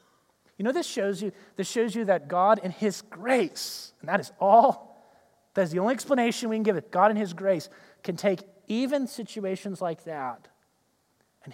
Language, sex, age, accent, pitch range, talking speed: English, male, 30-49, American, 180-235 Hz, 190 wpm